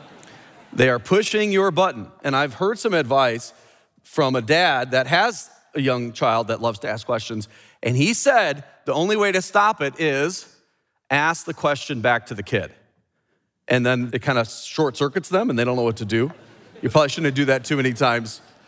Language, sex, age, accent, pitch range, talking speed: English, male, 30-49, American, 115-165 Hz, 200 wpm